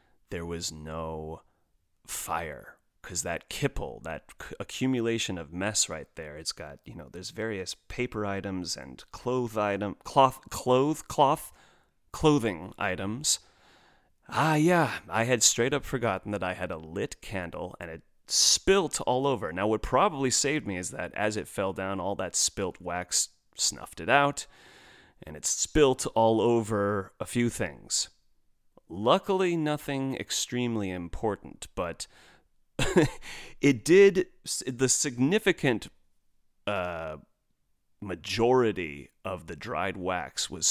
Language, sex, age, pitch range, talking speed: English, male, 30-49, 90-130 Hz, 130 wpm